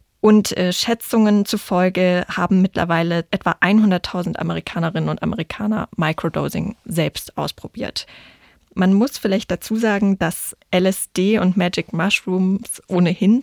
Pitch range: 175-200 Hz